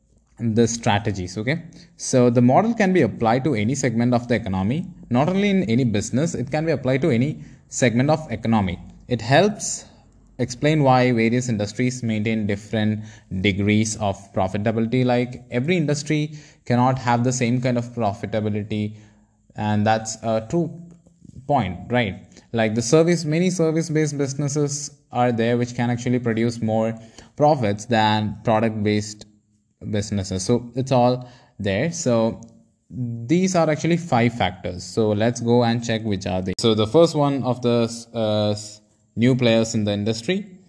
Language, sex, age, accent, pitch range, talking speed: English, male, 20-39, Indian, 110-135 Hz, 150 wpm